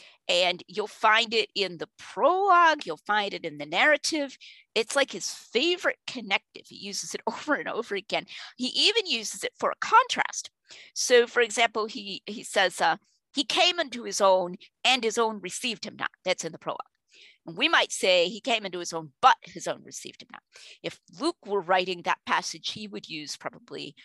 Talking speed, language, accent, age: 195 wpm, English, American, 40-59